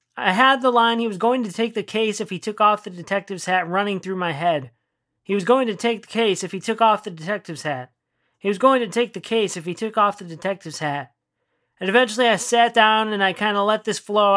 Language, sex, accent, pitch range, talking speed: English, male, American, 175-210 Hz, 260 wpm